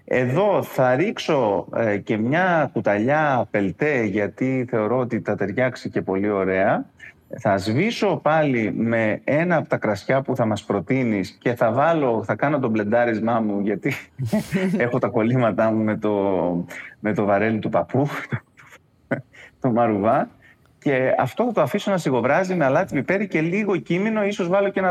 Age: 30-49